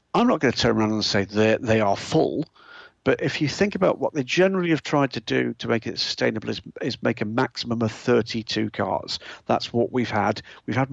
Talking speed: 230 wpm